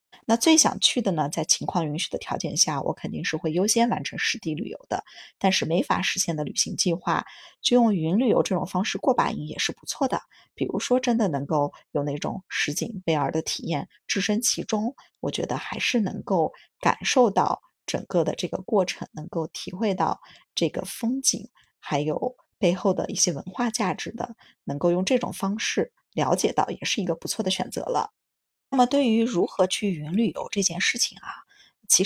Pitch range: 175-235 Hz